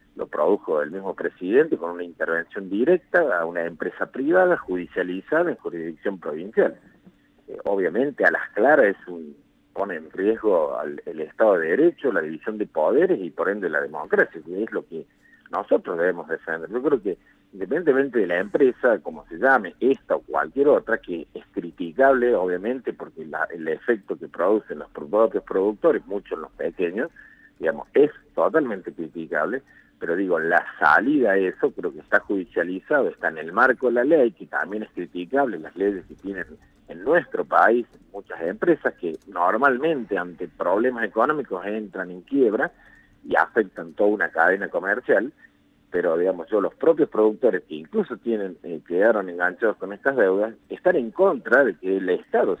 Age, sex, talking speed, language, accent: 50-69, male, 165 wpm, Spanish, Argentinian